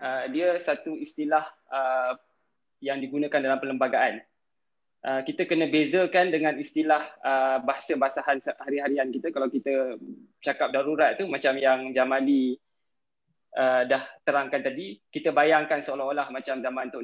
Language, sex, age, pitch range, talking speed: Malay, male, 20-39, 145-195 Hz, 115 wpm